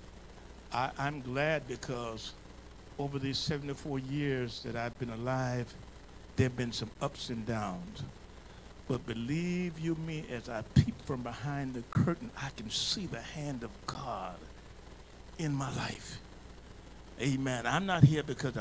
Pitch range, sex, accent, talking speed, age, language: 95-140 Hz, male, American, 140 wpm, 50-69, English